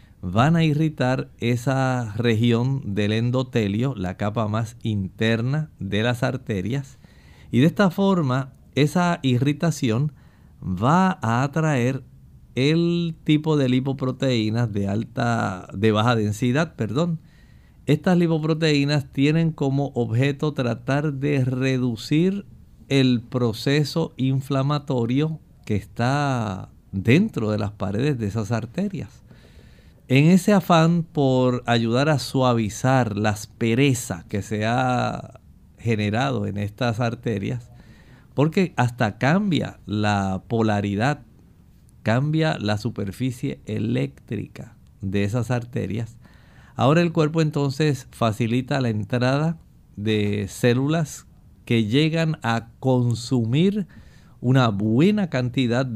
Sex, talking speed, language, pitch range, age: male, 100 wpm, Spanish, 110-145 Hz, 50-69